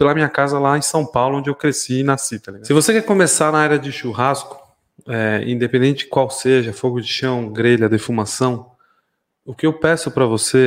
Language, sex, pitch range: Portuguese, male, 125-150 Hz